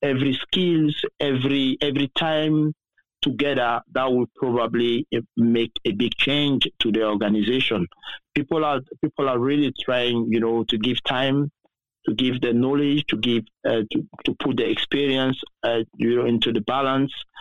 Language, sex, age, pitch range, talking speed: English, male, 50-69, 120-145 Hz, 155 wpm